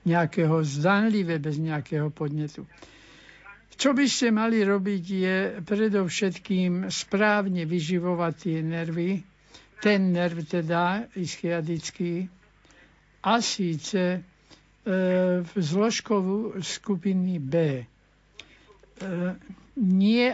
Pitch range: 165-195 Hz